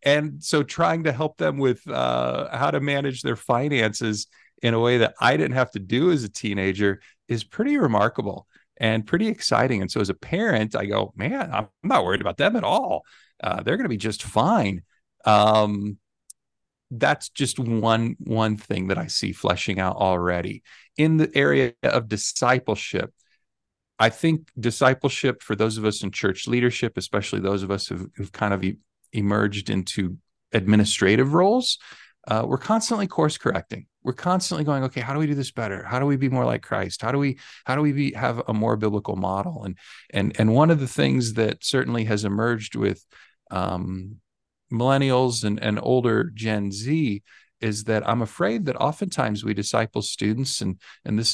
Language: English